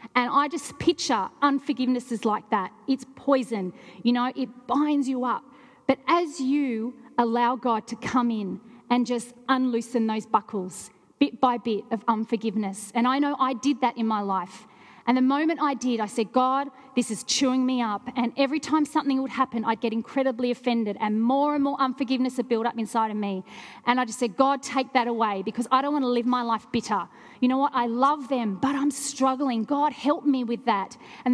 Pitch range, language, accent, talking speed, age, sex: 225-265 Hz, English, Australian, 205 wpm, 40-59, female